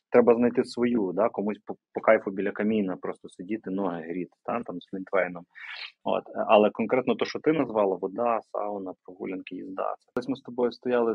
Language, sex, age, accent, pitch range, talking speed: Ukrainian, male, 20-39, native, 100-120 Hz, 170 wpm